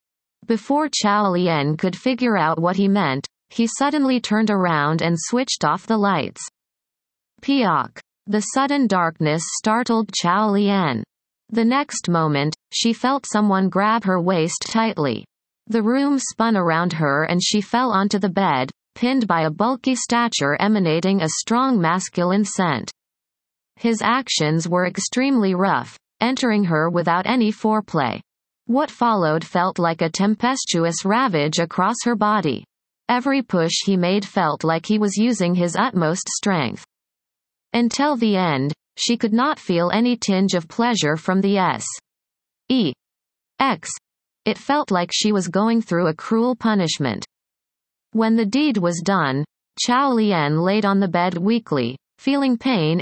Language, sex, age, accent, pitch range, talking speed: English, female, 30-49, American, 170-230 Hz, 145 wpm